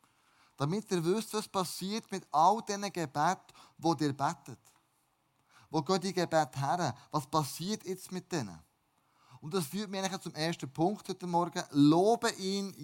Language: German